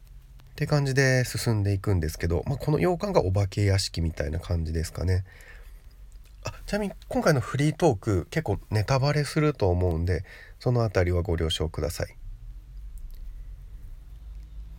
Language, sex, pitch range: Japanese, male, 90-120 Hz